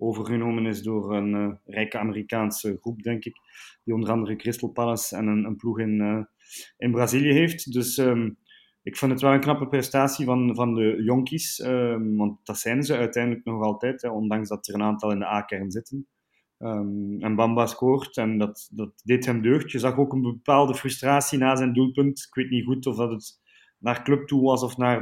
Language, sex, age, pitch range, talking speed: Dutch, male, 20-39, 110-130 Hz, 200 wpm